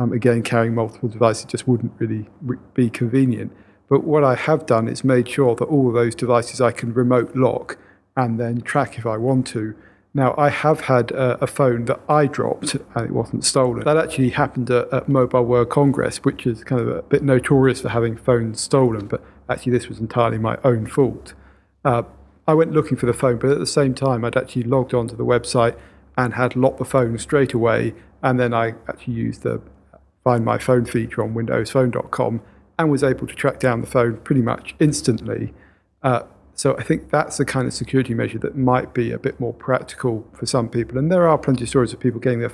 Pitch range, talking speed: 115-130 Hz, 215 wpm